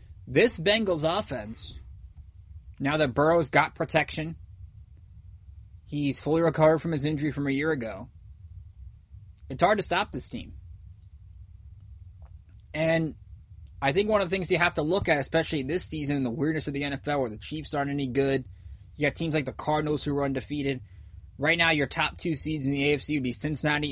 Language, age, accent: English, 20-39, American